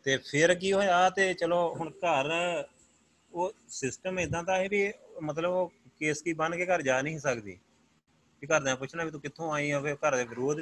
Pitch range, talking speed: 130-170 Hz, 200 wpm